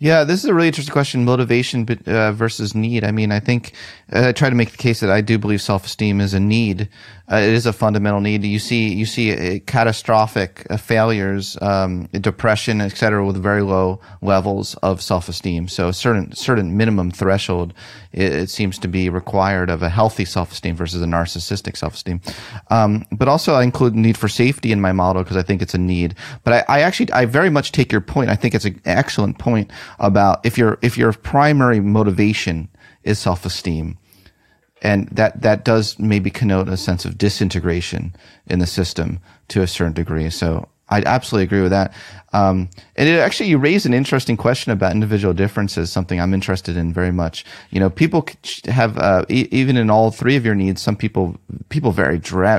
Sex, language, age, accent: male, English, 30-49, American